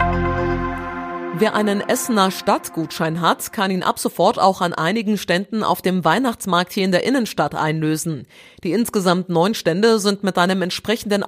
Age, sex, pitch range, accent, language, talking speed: 30-49, female, 160-205 Hz, German, German, 155 wpm